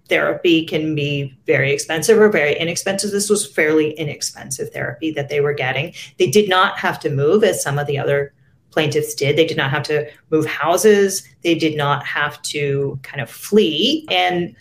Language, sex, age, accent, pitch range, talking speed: English, female, 40-59, American, 145-195 Hz, 190 wpm